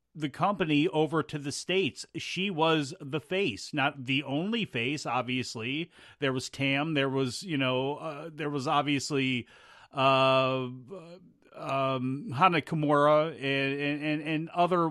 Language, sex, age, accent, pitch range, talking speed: English, male, 40-59, American, 140-185 Hz, 135 wpm